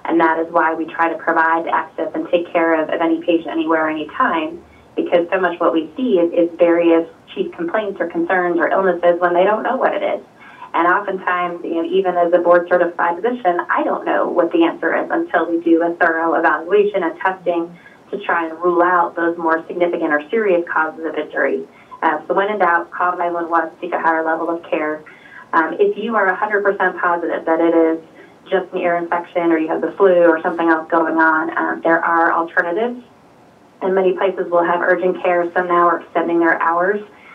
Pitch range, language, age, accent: 165-185 Hz, English, 20-39, American